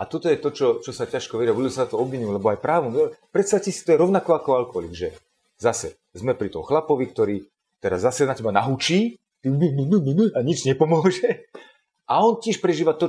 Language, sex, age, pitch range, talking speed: Slovak, male, 40-59, 120-195 Hz, 195 wpm